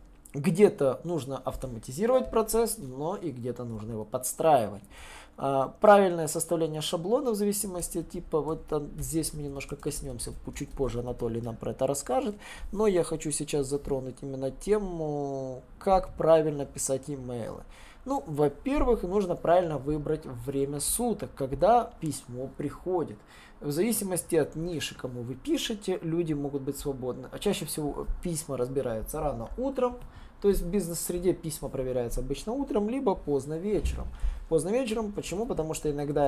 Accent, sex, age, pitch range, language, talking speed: native, male, 20-39, 135-180 Hz, Russian, 140 wpm